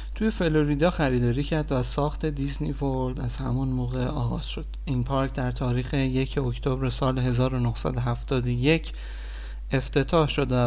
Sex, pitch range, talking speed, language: male, 125-150 Hz, 135 wpm, Persian